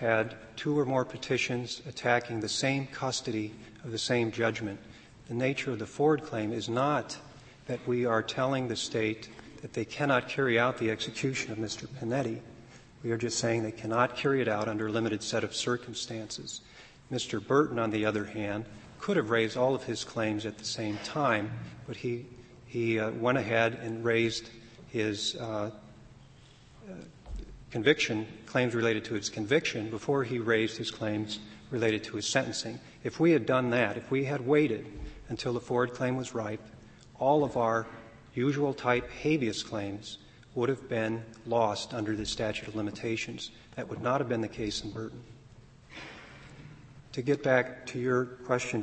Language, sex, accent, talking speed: English, male, American, 175 wpm